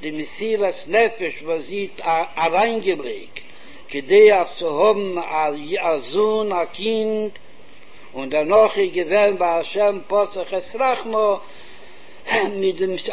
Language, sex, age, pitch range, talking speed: Hebrew, male, 60-79, 185-225 Hz, 70 wpm